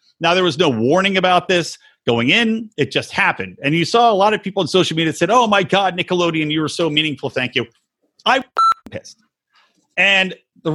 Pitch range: 145-200 Hz